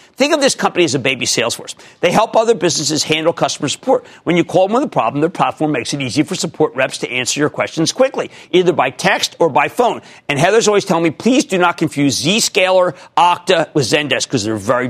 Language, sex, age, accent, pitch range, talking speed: English, male, 50-69, American, 145-185 Hz, 230 wpm